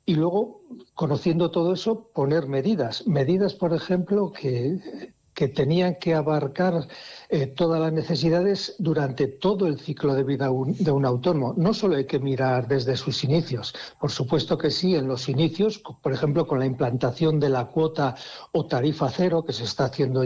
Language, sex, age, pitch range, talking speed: Spanish, male, 60-79, 140-170 Hz, 170 wpm